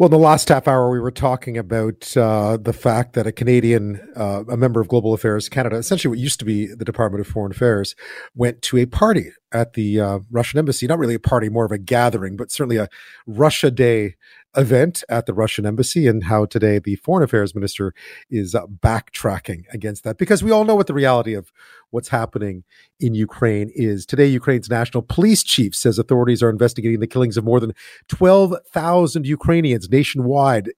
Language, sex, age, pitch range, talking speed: English, male, 40-59, 110-130 Hz, 195 wpm